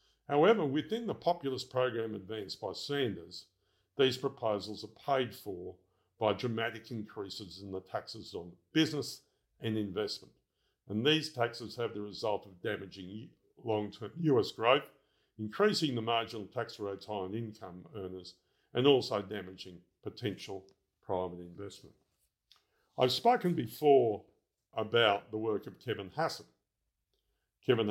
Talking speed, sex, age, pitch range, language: 125 wpm, male, 50-69, 95-125 Hz, English